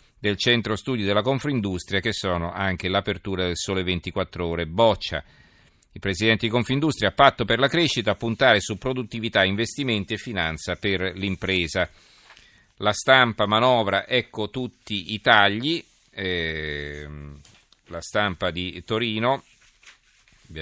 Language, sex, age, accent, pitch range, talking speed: Italian, male, 40-59, native, 90-115 Hz, 130 wpm